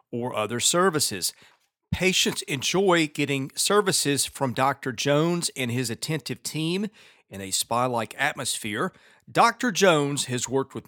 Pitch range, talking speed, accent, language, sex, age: 125-170 Hz, 125 wpm, American, English, male, 40-59